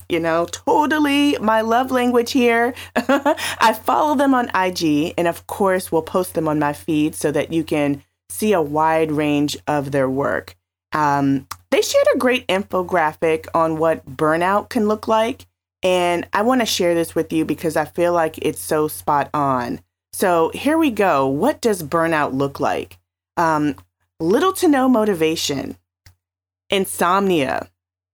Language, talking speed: English, 160 wpm